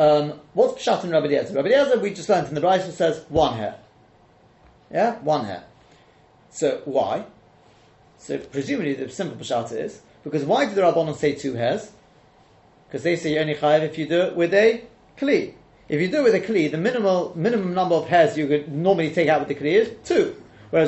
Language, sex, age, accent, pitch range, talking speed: English, male, 30-49, British, 150-215 Hz, 210 wpm